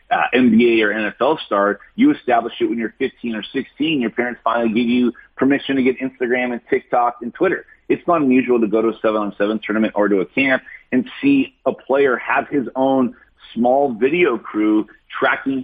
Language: English